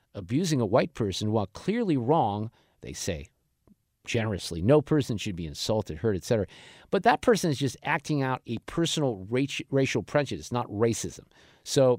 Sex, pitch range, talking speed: male, 115-160 Hz, 160 wpm